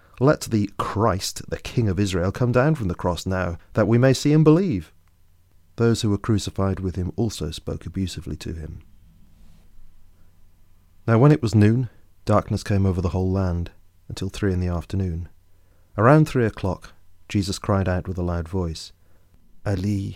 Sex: male